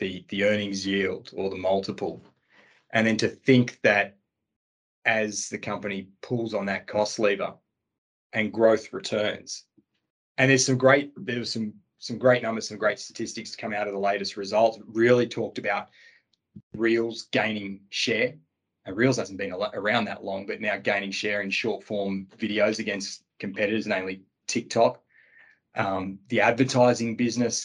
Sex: male